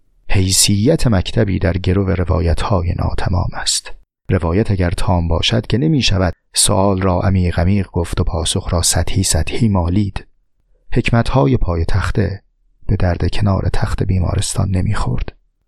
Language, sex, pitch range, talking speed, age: Persian, male, 95-120 Hz, 140 wpm, 40-59